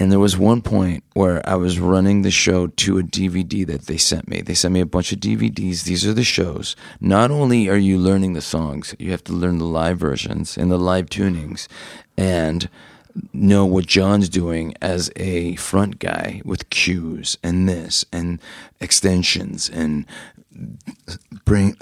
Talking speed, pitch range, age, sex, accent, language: 175 wpm, 85-100 Hz, 40-59, male, American, English